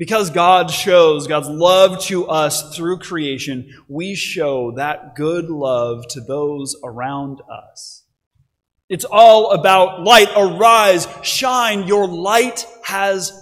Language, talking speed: English, 120 wpm